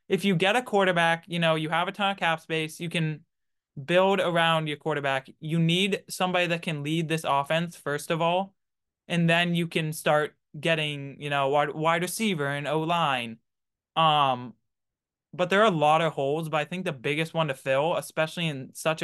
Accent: American